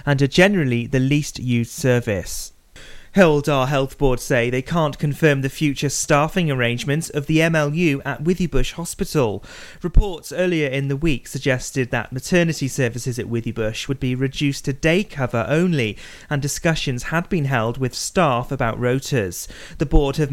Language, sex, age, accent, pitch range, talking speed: English, male, 30-49, British, 125-155 Hz, 160 wpm